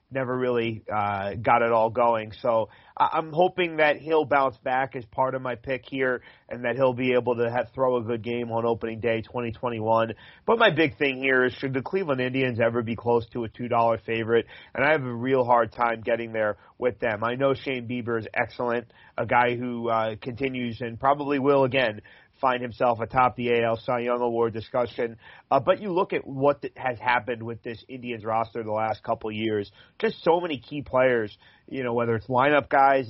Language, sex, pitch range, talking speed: English, male, 115-135 Hz, 205 wpm